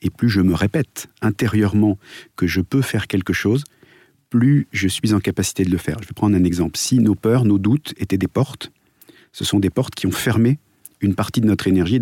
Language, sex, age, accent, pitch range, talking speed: French, male, 40-59, French, 95-120 Hz, 225 wpm